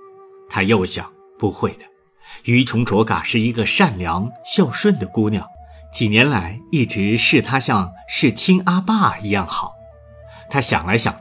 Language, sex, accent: Chinese, male, native